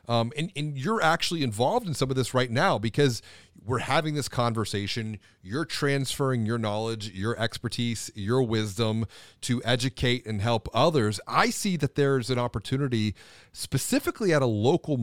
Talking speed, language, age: 160 wpm, English, 40-59